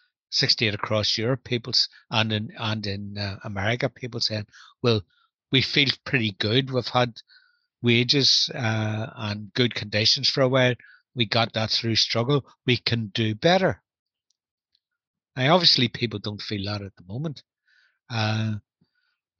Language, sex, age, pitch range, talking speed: English, male, 60-79, 110-135 Hz, 140 wpm